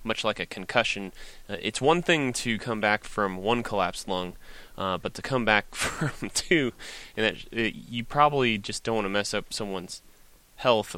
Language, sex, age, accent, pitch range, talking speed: English, male, 20-39, American, 100-120 Hz, 190 wpm